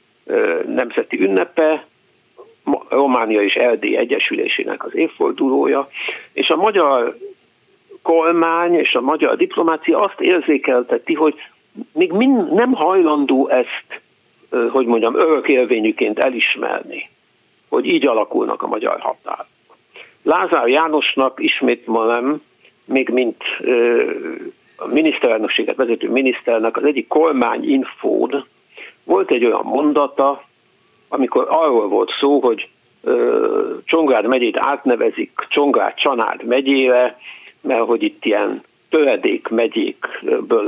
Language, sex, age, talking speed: Hungarian, male, 60-79, 100 wpm